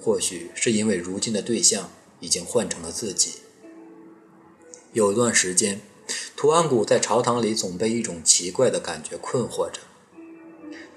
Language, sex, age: Chinese, male, 20-39